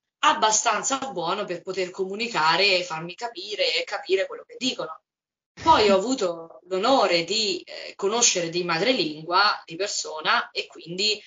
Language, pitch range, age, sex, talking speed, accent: Italian, 170-205 Hz, 20-39, female, 140 wpm, native